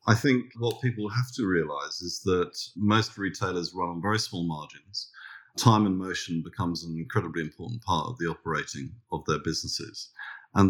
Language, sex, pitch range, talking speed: English, male, 85-110 Hz, 175 wpm